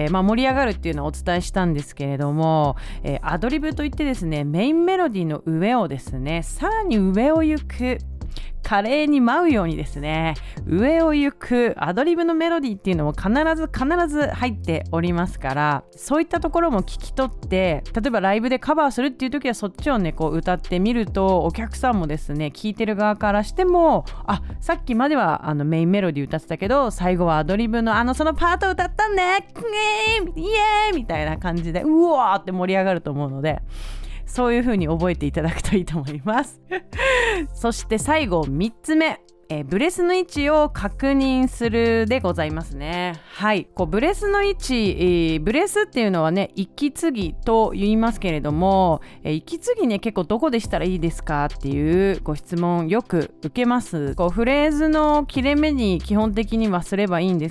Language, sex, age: Japanese, female, 30-49